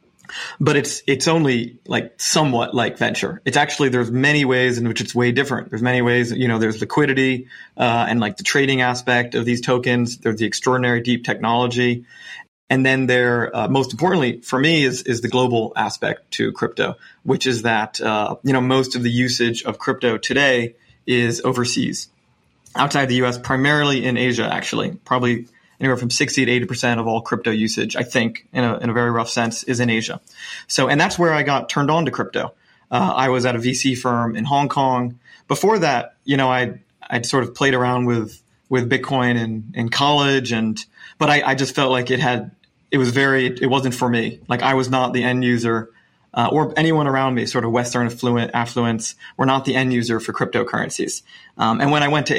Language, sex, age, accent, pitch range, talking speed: English, male, 30-49, American, 120-135 Hz, 210 wpm